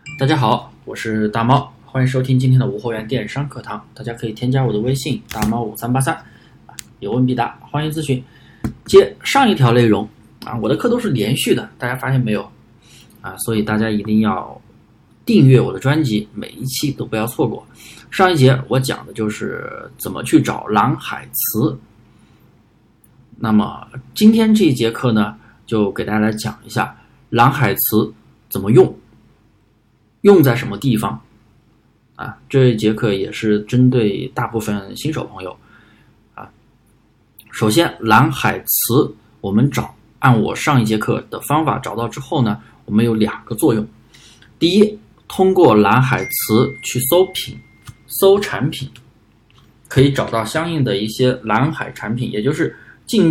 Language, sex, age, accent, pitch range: Chinese, male, 20-39, native, 110-135 Hz